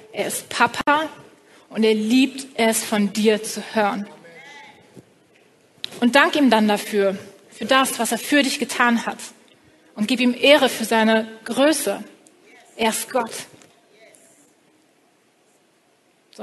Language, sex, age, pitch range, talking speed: German, female, 30-49, 215-255 Hz, 130 wpm